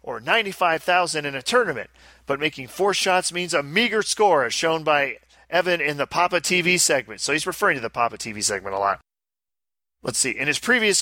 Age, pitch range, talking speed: 40-59, 145-185 Hz, 200 wpm